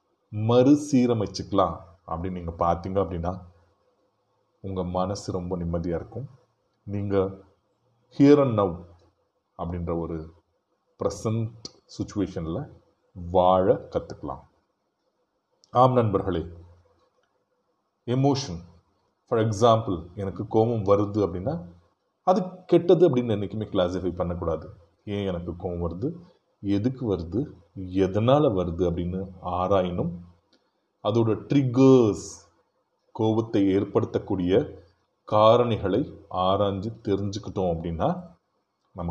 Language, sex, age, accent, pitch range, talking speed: Tamil, male, 30-49, native, 90-110 Hz, 80 wpm